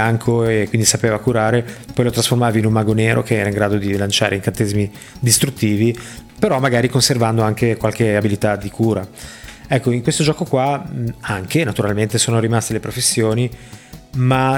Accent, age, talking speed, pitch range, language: native, 20-39, 160 wpm, 110-125 Hz, Italian